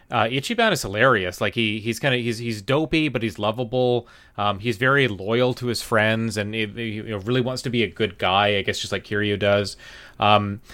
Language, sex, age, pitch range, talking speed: English, male, 30-49, 105-125 Hz, 225 wpm